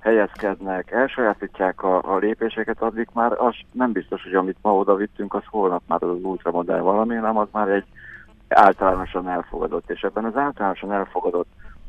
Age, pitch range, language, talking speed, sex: 60-79, 90-105 Hz, Hungarian, 155 wpm, male